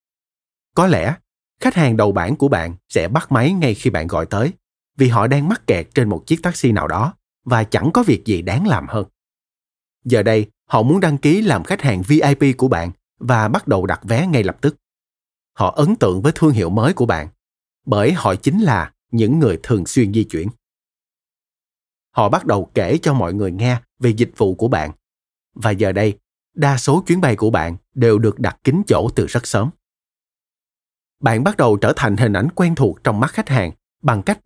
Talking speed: 205 wpm